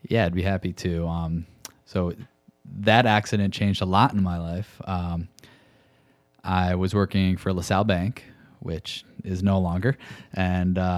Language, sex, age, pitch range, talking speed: English, male, 20-39, 90-105 Hz, 150 wpm